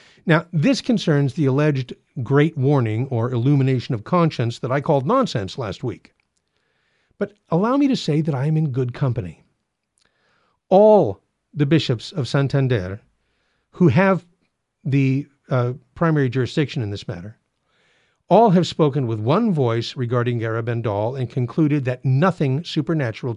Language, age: English, 50-69